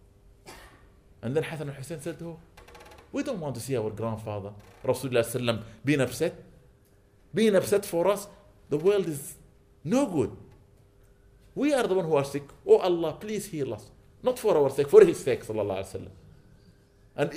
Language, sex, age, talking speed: English, male, 50-69, 180 wpm